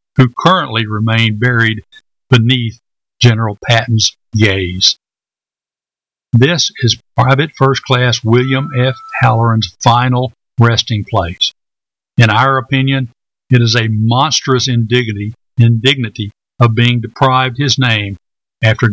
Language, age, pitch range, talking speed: English, 60-79, 110-130 Hz, 110 wpm